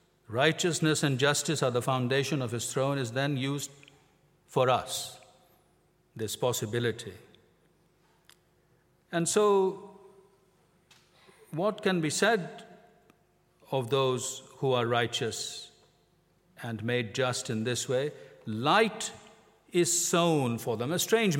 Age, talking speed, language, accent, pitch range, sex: 50-69, 110 wpm, English, Indian, 120-170 Hz, male